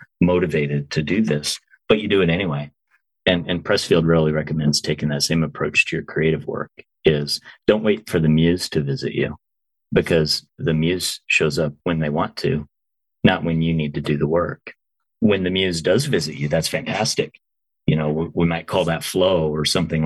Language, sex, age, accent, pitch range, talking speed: English, male, 30-49, American, 75-85 Hz, 195 wpm